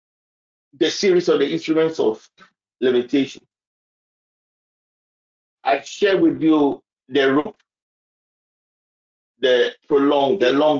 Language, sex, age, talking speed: English, male, 50-69, 95 wpm